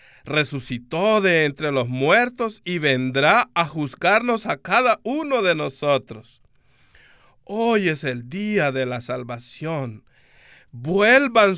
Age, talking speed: 50-69, 115 wpm